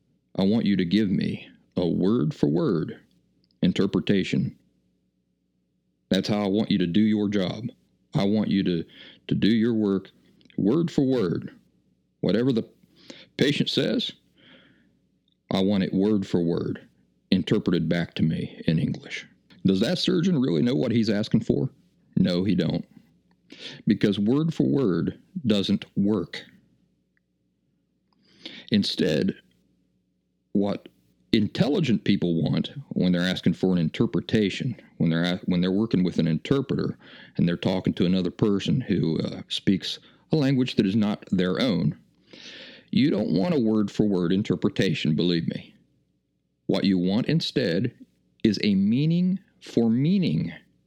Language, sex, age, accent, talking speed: English, male, 50-69, American, 125 wpm